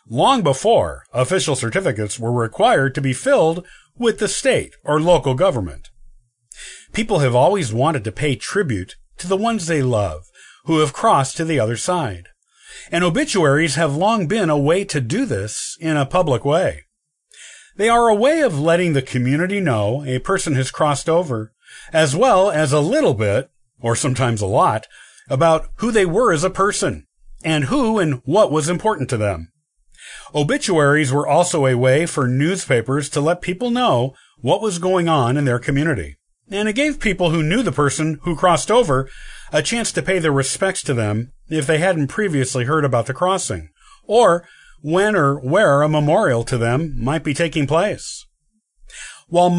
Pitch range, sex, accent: 130-180 Hz, male, American